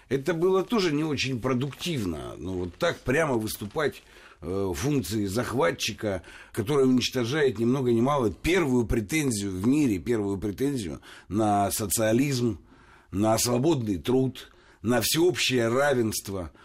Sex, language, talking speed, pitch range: male, Russian, 130 wpm, 110-155 Hz